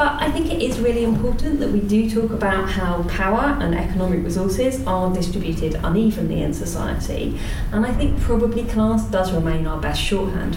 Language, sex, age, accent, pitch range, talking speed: English, female, 30-49, British, 180-220 Hz, 180 wpm